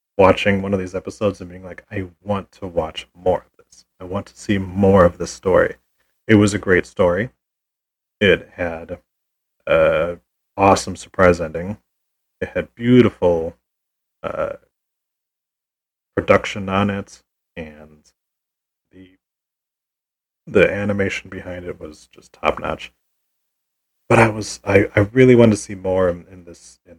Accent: American